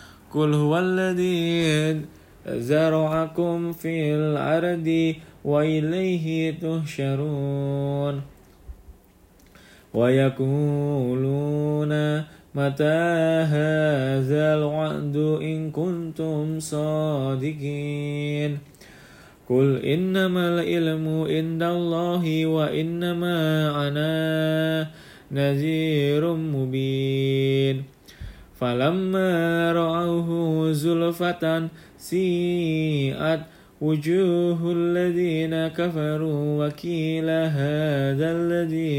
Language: Indonesian